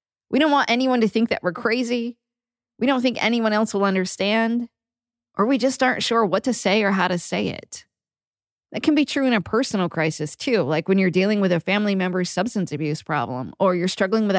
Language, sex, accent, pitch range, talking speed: English, female, American, 180-235 Hz, 220 wpm